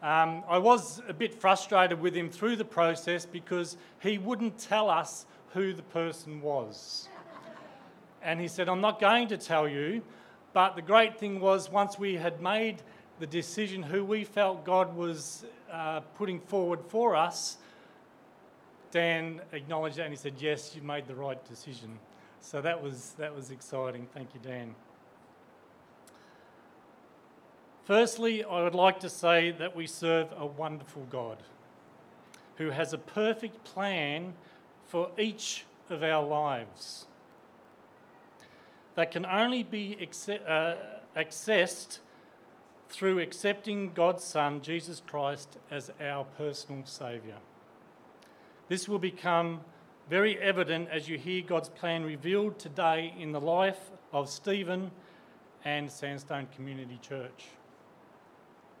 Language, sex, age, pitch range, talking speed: English, male, 40-59, 150-190 Hz, 130 wpm